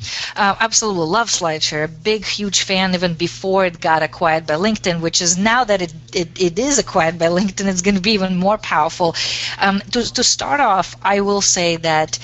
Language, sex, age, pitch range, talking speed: English, female, 30-49, 165-205 Hz, 195 wpm